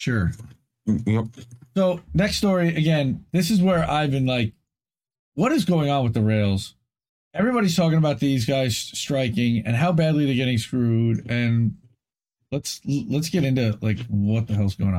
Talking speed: 160 wpm